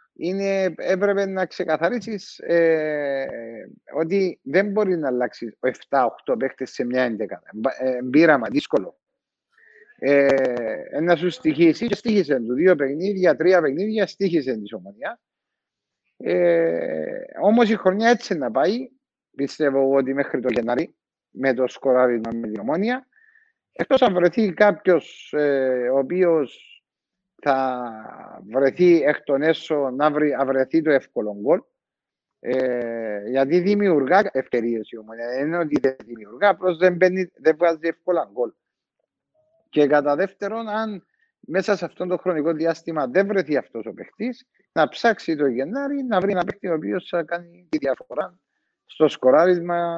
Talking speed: 130 wpm